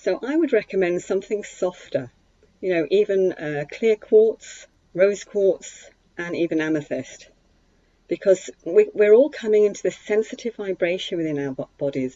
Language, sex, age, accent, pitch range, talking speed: English, female, 40-59, British, 160-210 Hz, 140 wpm